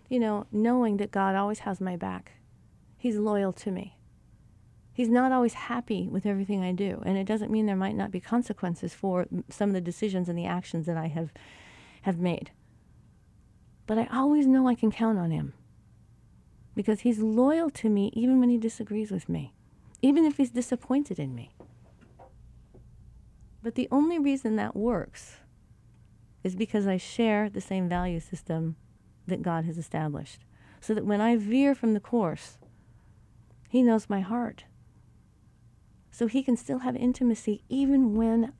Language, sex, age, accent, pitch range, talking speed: English, female, 40-59, American, 175-235 Hz, 165 wpm